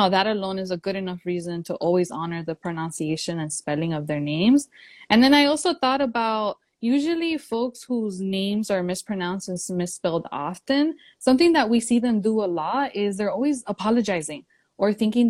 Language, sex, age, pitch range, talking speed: English, female, 20-39, 175-245 Hz, 180 wpm